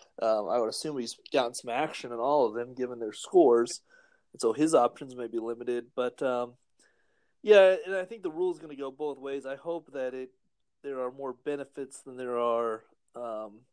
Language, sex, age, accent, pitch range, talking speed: English, male, 30-49, American, 120-140 Hz, 210 wpm